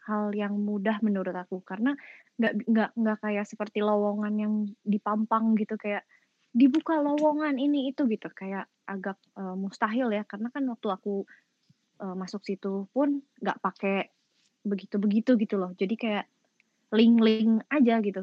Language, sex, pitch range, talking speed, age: Indonesian, female, 200-240 Hz, 140 wpm, 20-39